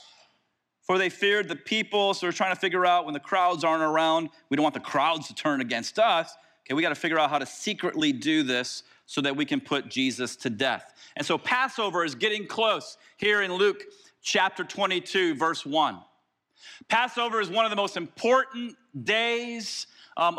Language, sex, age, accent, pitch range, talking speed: English, male, 40-59, American, 180-235 Hz, 195 wpm